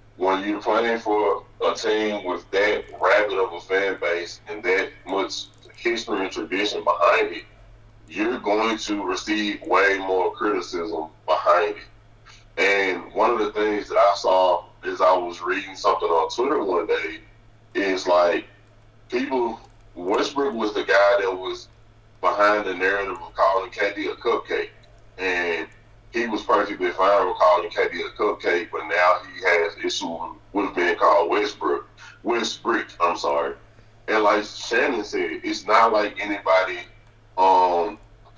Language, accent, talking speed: English, American, 150 wpm